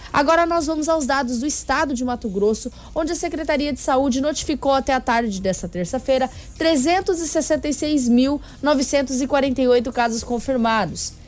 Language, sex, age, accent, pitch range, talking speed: Portuguese, female, 10-29, Brazilian, 230-290 Hz, 130 wpm